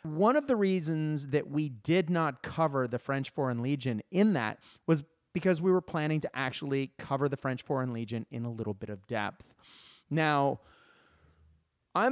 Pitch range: 125-165 Hz